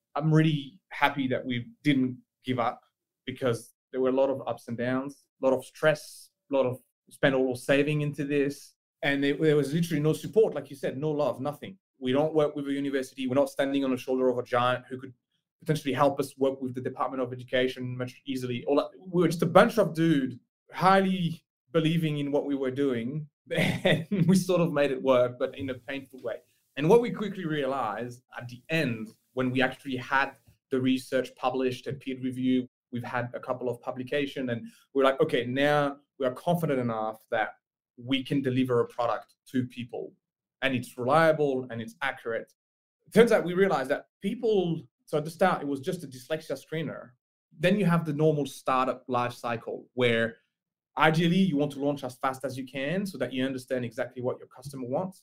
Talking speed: 205 wpm